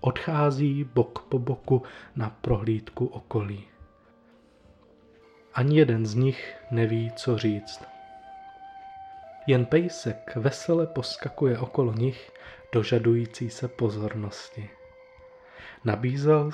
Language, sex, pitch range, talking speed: Czech, male, 120-155 Hz, 85 wpm